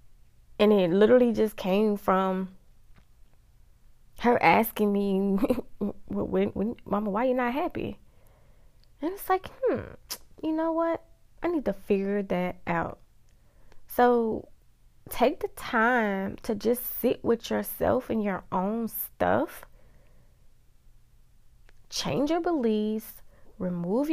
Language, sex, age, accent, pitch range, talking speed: English, female, 20-39, American, 185-235 Hz, 110 wpm